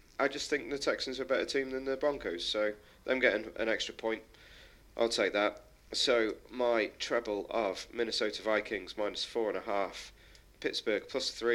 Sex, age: male, 40-59